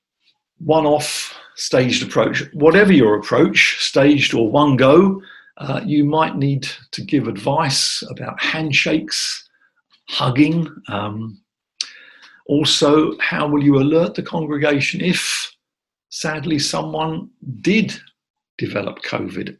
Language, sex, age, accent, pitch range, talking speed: English, male, 50-69, British, 125-160 Hz, 105 wpm